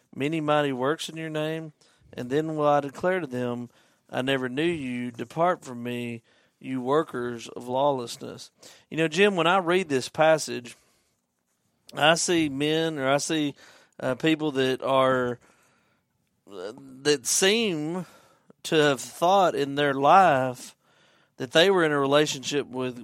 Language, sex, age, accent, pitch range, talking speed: English, male, 40-59, American, 130-155 Hz, 150 wpm